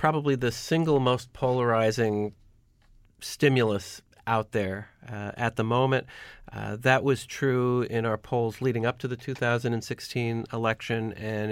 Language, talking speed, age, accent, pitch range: English, 135 wpm, 40-59, American, 115-135 Hz